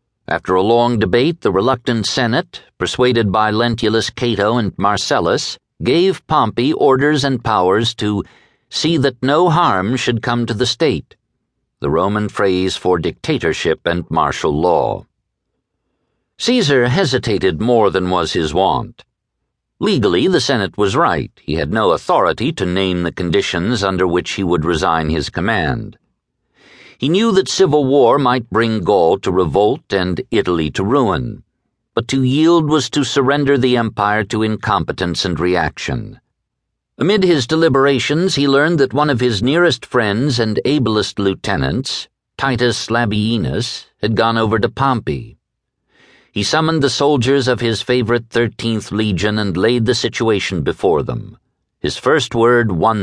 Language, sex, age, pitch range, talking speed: English, male, 60-79, 100-135 Hz, 145 wpm